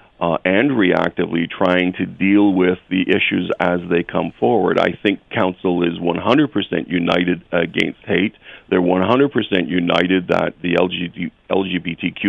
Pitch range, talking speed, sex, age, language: 90-95 Hz, 130 wpm, male, 50-69, English